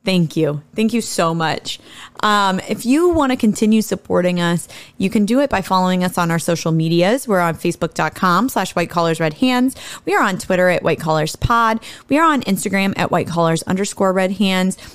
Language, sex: English, female